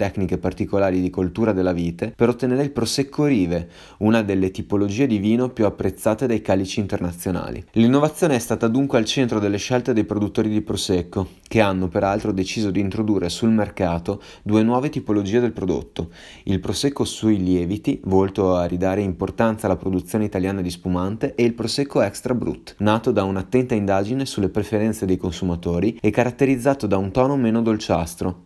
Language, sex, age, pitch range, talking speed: Italian, male, 30-49, 95-115 Hz, 165 wpm